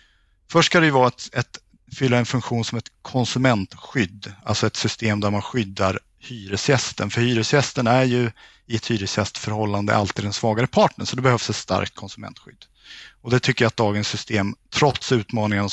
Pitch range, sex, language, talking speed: 110-130 Hz, male, Swedish, 170 wpm